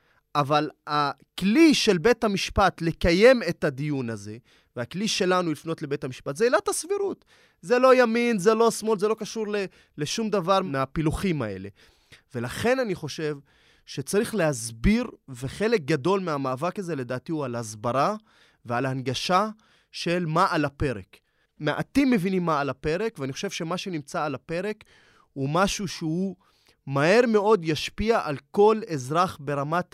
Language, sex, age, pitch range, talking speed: Hebrew, male, 20-39, 150-210 Hz, 140 wpm